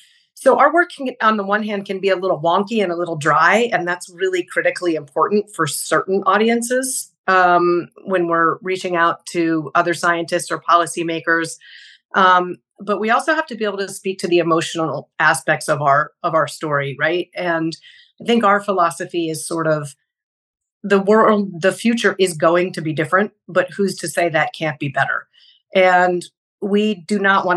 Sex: female